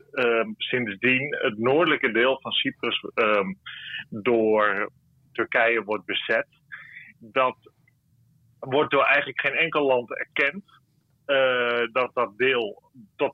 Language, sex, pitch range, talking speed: Dutch, male, 115-145 Hz, 105 wpm